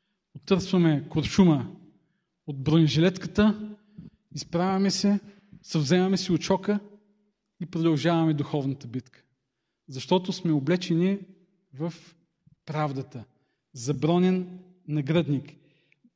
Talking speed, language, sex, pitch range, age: 75 wpm, Bulgarian, male, 150-195 Hz, 40-59